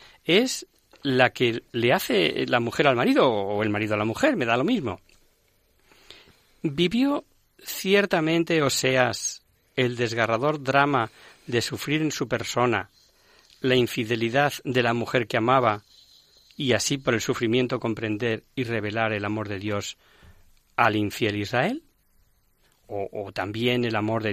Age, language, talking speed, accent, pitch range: 40-59, Spanish, 145 wpm, Spanish, 115-135 Hz